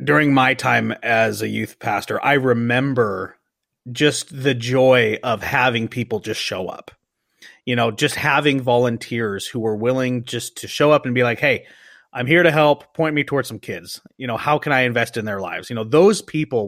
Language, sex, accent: English, male, American